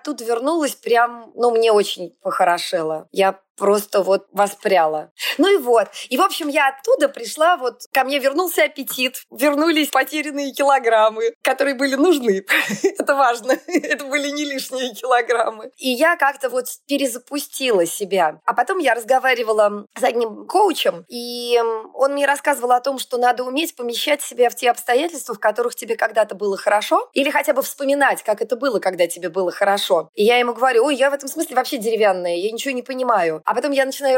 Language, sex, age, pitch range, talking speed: Russian, female, 20-39, 220-275 Hz, 175 wpm